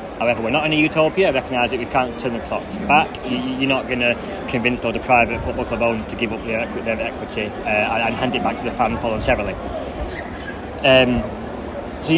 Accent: British